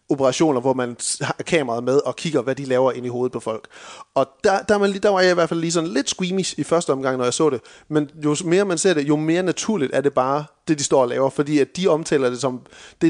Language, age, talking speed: Danish, 30-49, 275 wpm